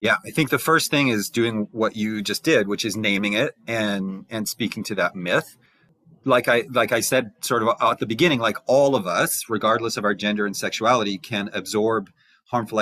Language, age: English, 30-49